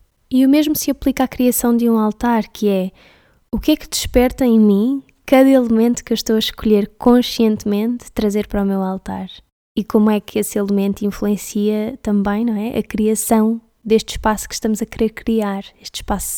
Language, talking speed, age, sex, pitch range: Portuguese, 195 wpm, 10-29, female, 210-250 Hz